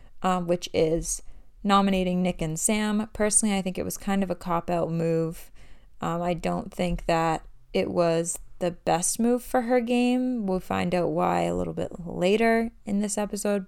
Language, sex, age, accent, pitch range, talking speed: English, female, 20-39, American, 170-210 Hz, 180 wpm